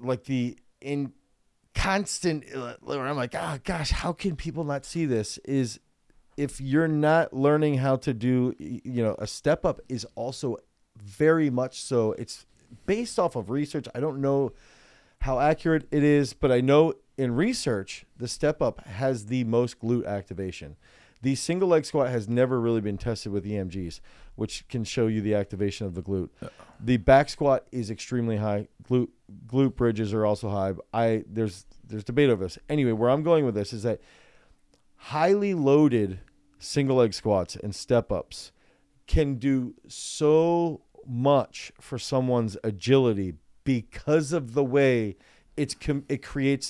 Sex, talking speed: male, 160 wpm